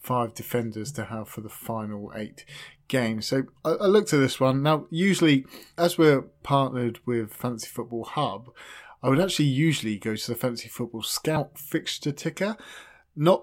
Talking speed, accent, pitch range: 170 wpm, British, 115-140 Hz